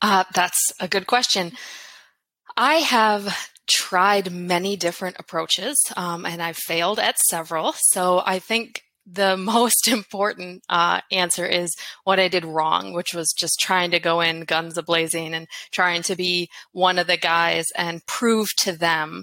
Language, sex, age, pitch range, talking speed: English, female, 20-39, 165-195 Hz, 160 wpm